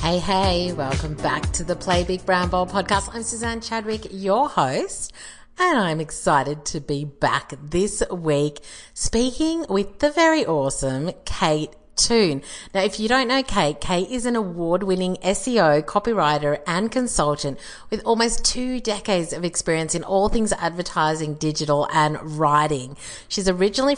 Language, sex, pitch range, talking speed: English, female, 155-220 Hz, 155 wpm